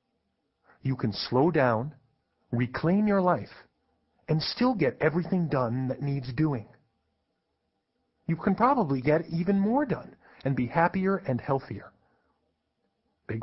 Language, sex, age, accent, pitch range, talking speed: English, male, 40-59, American, 120-170 Hz, 125 wpm